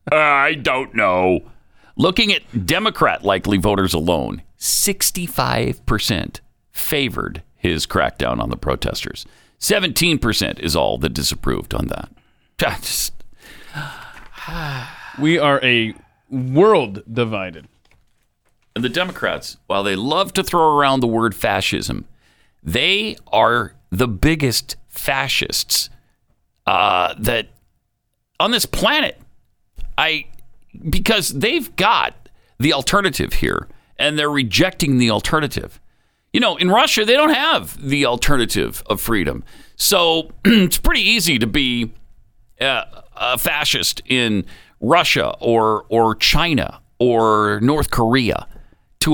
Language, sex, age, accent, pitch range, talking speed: English, male, 50-69, American, 110-165 Hz, 110 wpm